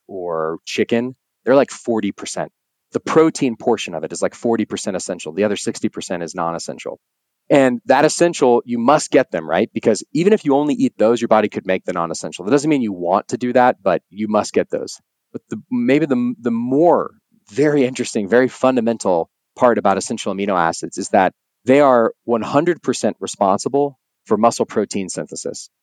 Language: English